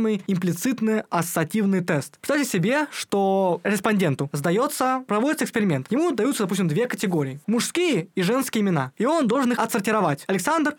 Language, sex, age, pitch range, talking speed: Russian, male, 20-39, 175-250 Hz, 140 wpm